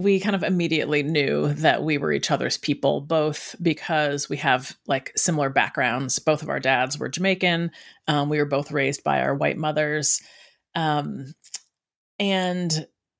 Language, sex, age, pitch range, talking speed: English, female, 30-49, 150-185 Hz, 160 wpm